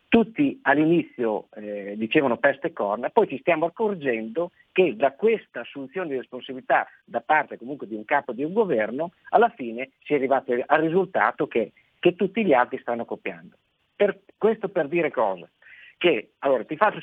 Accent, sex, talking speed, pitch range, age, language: native, male, 175 wpm, 130-175 Hz, 50-69, Italian